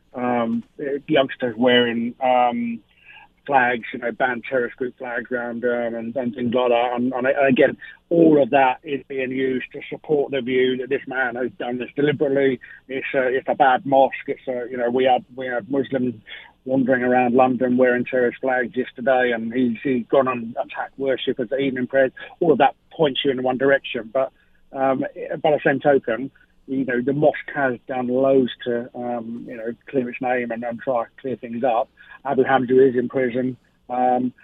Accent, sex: British, male